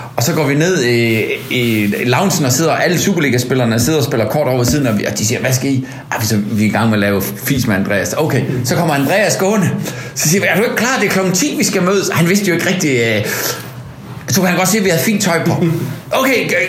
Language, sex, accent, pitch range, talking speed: Danish, male, native, 125-180 Hz, 275 wpm